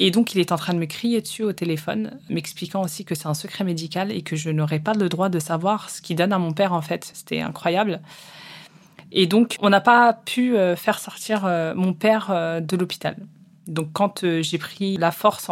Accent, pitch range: French, 170-210 Hz